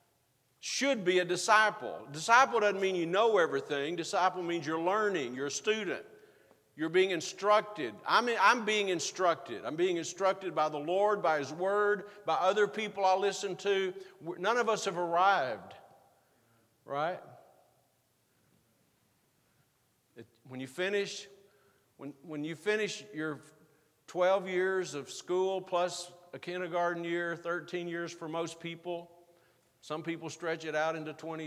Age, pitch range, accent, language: 50-69, 155-200 Hz, American, English